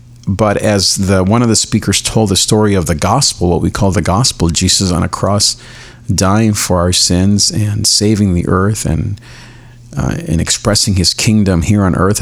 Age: 40-59